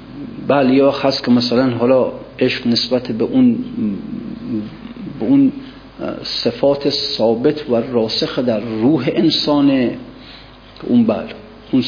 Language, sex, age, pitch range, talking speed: Persian, male, 50-69, 115-135 Hz, 115 wpm